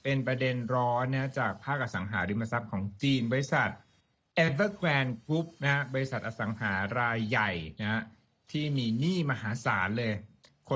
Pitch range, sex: 110-150 Hz, male